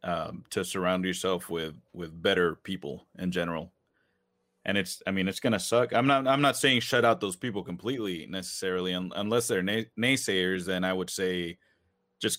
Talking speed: 175 wpm